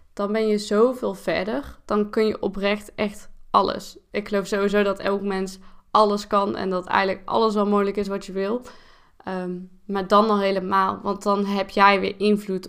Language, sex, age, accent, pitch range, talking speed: Dutch, female, 20-39, Dutch, 190-215 Hz, 190 wpm